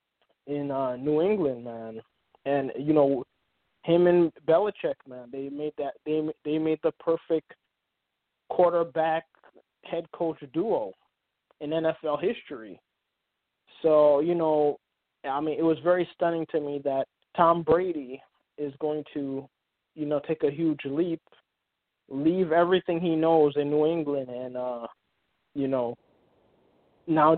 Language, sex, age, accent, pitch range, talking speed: English, male, 20-39, American, 140-165 Hz, 135 wpm